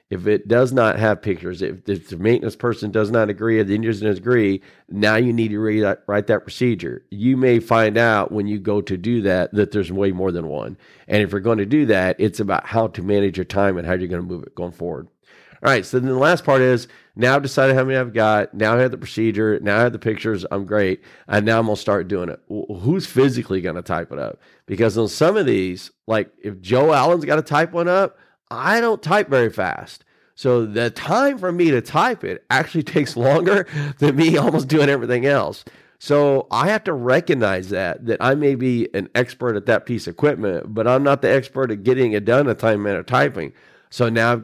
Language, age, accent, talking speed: English, 40-59, American, 240 wpm